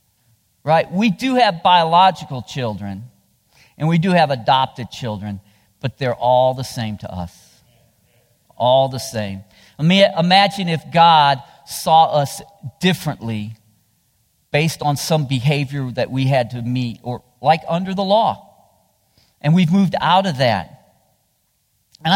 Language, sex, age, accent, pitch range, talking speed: English, male, 50-69, American, 110-150 Hz, 140 wpm